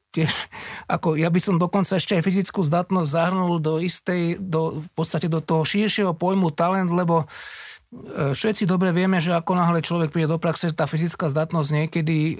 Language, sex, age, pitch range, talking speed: Slovak, male, 30-49, 140-170 Hz, 175 wpm